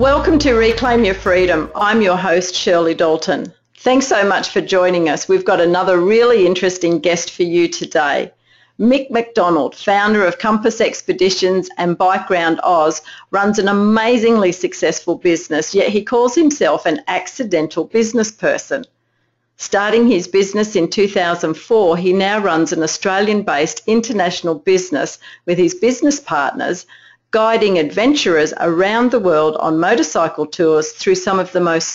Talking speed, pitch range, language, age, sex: 145 wpm, 165-220 Hz, English, 50-69, female